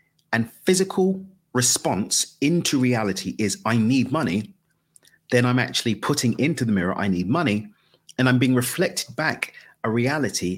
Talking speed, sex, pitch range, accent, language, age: 145 wpm, male, 105-160 Hz, British, English, 40-59